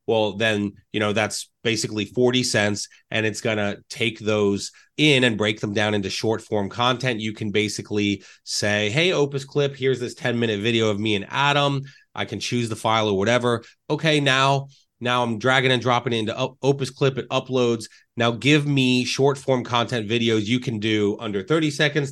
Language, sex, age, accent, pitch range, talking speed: English, male, 30-49, American, 110-135 Hz, 185 wpm